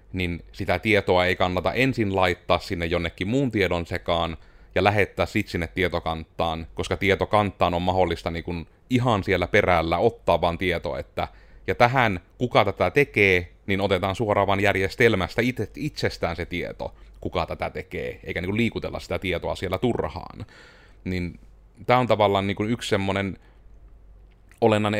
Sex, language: male, Finnish